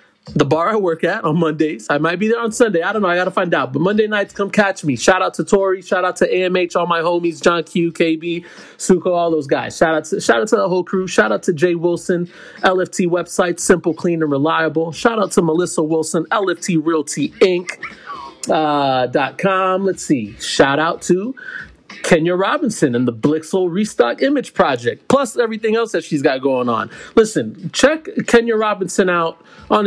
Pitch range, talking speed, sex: 165-205 Hz, 205 wpm, male